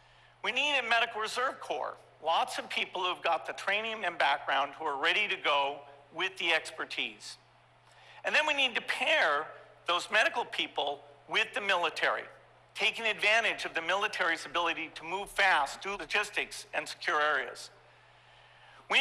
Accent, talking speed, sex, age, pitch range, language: American, 160 wpm, male, 50-69, 160-225 Hz, English